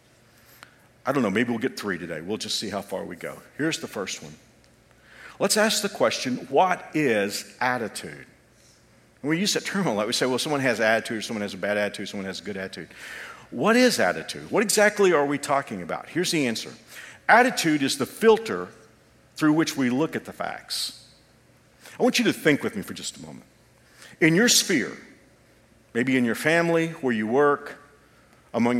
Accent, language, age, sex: American, English, 50-69, male